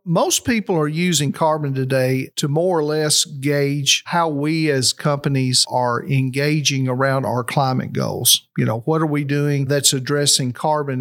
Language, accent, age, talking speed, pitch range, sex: English, American, 50-69, 165 wpm, 130-155 Hz, male